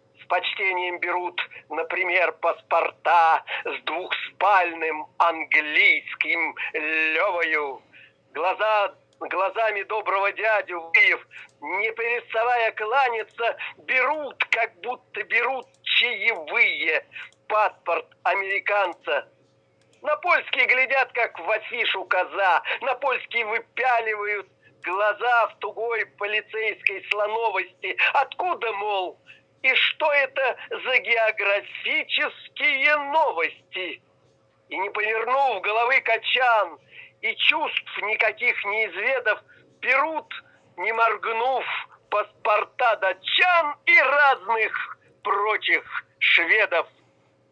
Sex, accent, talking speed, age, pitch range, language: male, native, 80 wpm, 50-69, 205-265 Hz, Russian